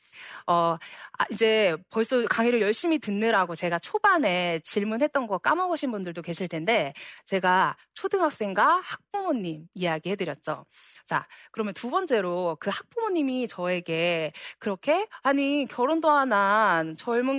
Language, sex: Korean, female